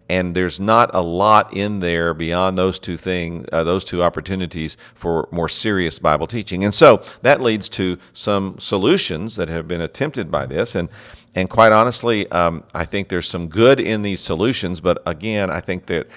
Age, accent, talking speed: 50-69, American, 190 wpm